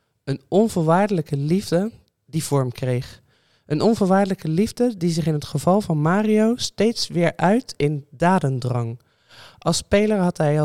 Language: Dutch